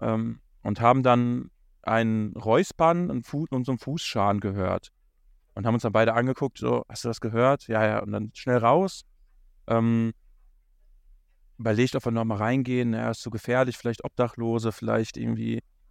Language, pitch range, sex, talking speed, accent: German, 105-130 Hz, male, 170 wpm, German